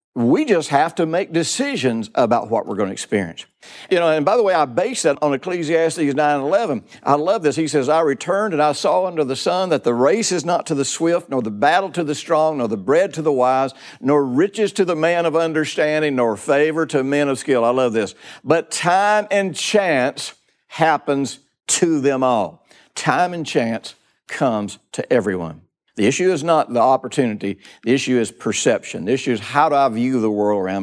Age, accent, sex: 60-79, American, male